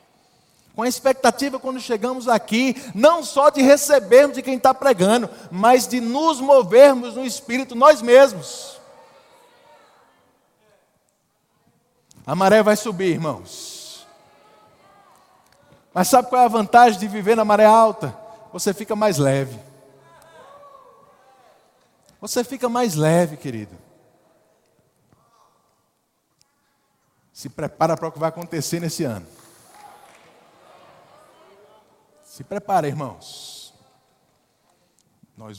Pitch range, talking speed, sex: 145-225 Hz, 100 wpm, male